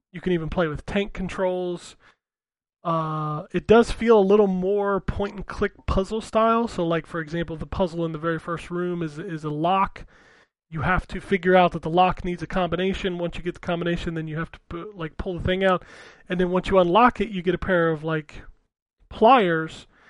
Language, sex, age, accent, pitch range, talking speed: English, male, 30-49, American, 165-185 Hz, 210 wpm